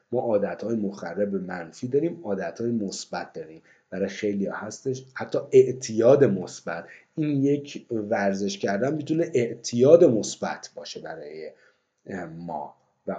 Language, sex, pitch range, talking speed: Persian, male, 100-135 Hz, 115 wpm